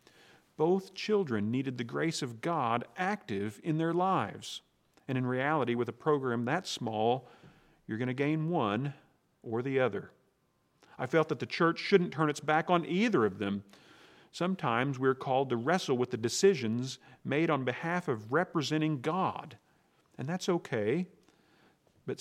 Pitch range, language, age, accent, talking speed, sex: 115-165 Hz, English, 40-59, American, 155 wpm, male